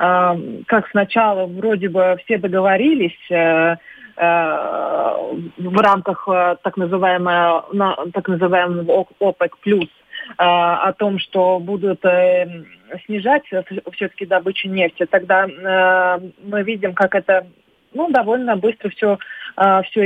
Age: 20-39